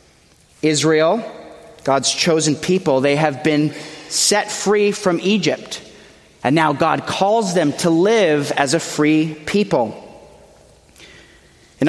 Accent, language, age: American, English, 30-49